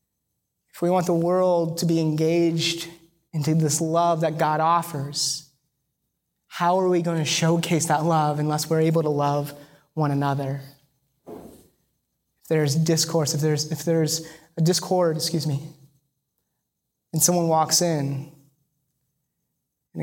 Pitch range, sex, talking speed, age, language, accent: 150-175 Hz, male, 130 wpm, 20-39, English, American